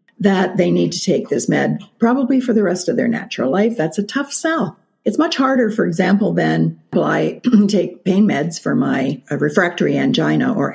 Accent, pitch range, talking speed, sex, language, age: American, 180-240 Hz, 195 wpm, female, English, 50-69